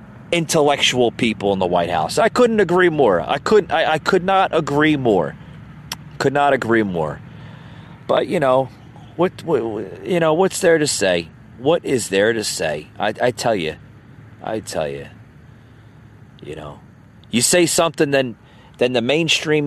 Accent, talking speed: American, 165 wpm